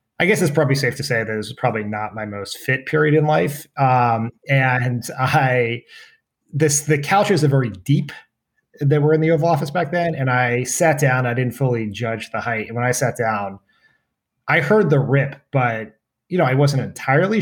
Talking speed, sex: 205 wpm, male